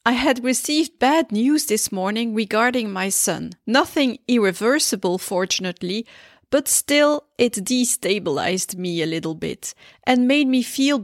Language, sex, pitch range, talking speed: English, female, 215-275 Hz, 135 wpm